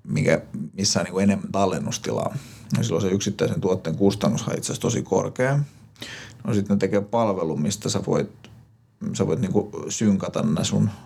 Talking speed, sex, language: 155 wpm, male, Finnish